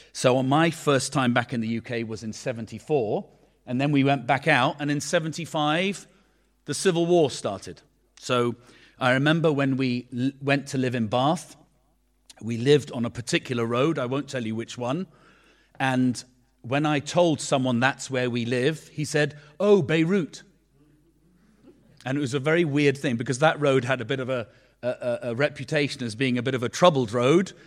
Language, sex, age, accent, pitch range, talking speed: English, male, 40-59, British, 125-150 Hz, 185 wpm